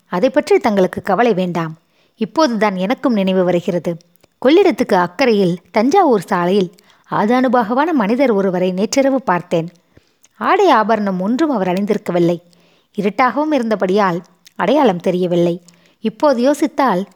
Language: Tamil